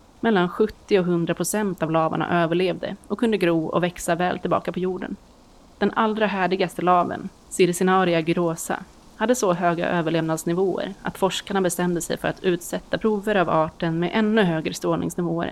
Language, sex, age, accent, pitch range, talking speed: Swedish, female, 30-49, native, 165-195 Hz, 160 wpm